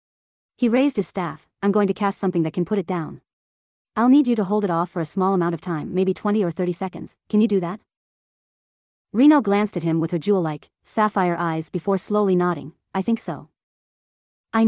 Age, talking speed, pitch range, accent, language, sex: 30-49, 215 wpm, 170-210 Hz, American, English, female